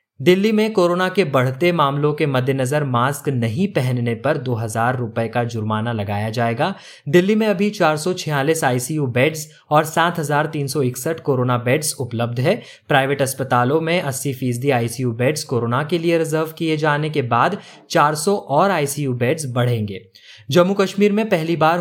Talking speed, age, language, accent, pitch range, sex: 150 wpm, 20-39, Hindi, native, 130-170 Hz, male